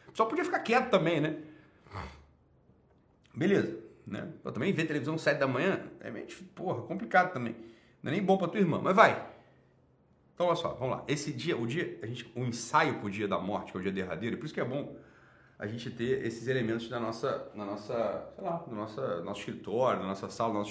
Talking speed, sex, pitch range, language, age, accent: 230 wpm, male, 130-210 Hz, Portuguese, 40-59, Brazilian